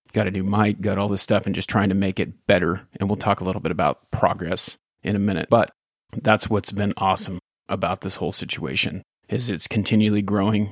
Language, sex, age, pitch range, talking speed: English, male, 30-49, 95-105 Hz, 220 wpm